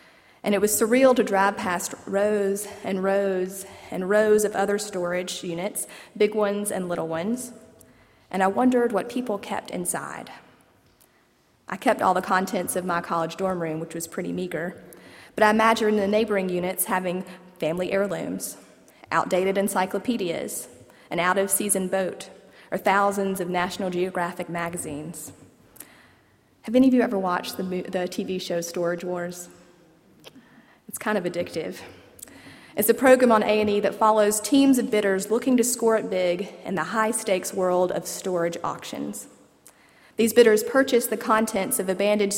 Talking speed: 150 wpm